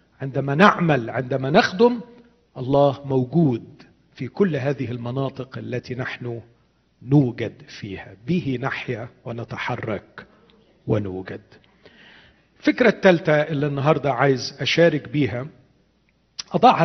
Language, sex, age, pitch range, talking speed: Arabic, male, 50-69, 125-155 Hz, 95 wpm